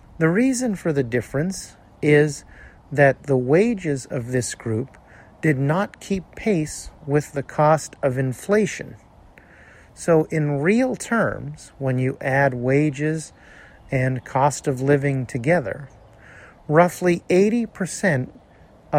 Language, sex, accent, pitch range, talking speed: English, male, American, 130-175 Hz, 115 wpm